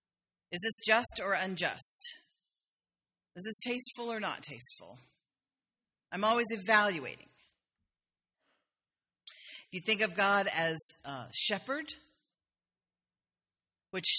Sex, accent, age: female, American, 40-59